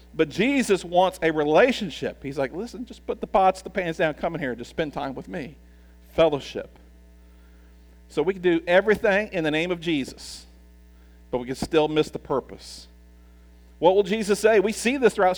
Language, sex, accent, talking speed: English, male, American, 195 wpm